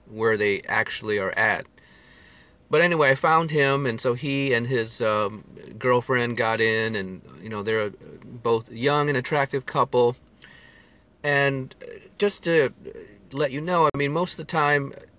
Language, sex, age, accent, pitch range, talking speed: English, male, 40-59, American, 115-145 Hz, 160 wpm